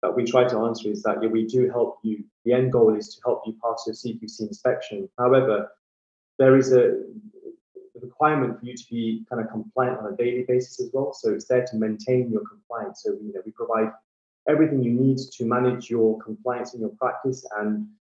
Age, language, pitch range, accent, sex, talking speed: 20-39, English, 110-130 Hz, British, male, 210 wpm